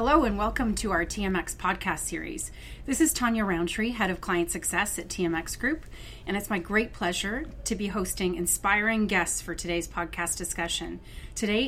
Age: 30-49